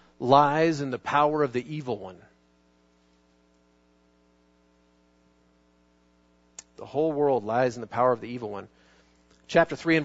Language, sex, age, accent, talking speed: English, male, 40-59, American, 130 wpm